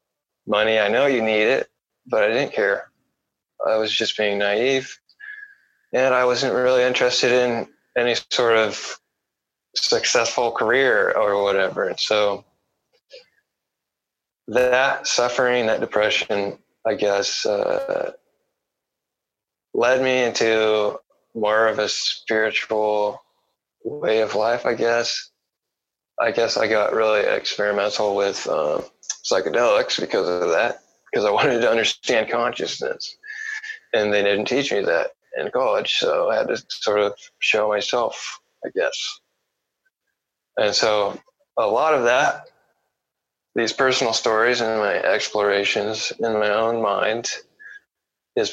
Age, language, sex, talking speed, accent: 20-39, English, male, 125 wpm, American